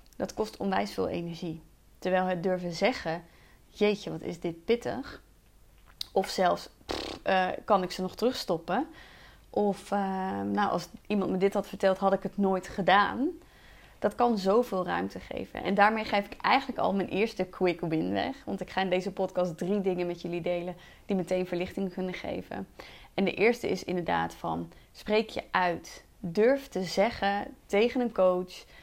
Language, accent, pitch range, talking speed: Dutch, Dutch, 185-235 Hz, 175 wpm